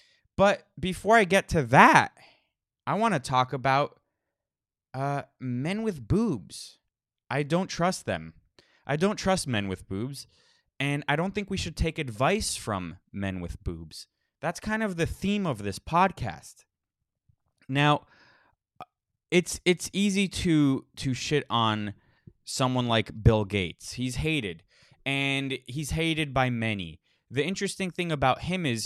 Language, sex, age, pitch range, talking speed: English, male, 20-39, 100-145 Hz, 145 wpm